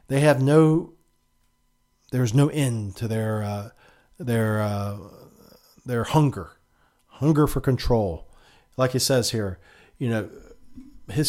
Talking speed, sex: 120 wpm, male